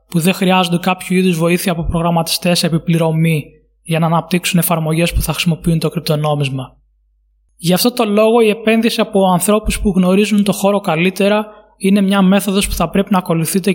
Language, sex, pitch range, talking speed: Greek, male, 165-205 Hz, 170 wpm